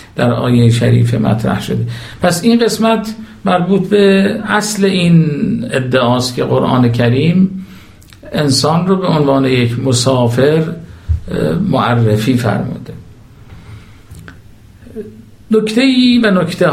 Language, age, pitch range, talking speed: Persian, 50-69, 115-170 Hz, 95 wpm